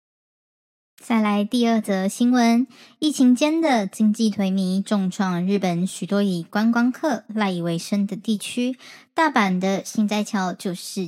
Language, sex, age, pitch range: Chinese, male, 10-29, 195-245 Hz